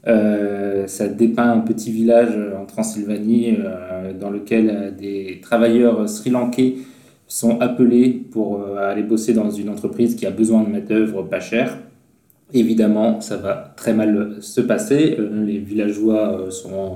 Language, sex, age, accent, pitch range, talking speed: French, male, 20-39, French, 100-120 Hz, 155 wpm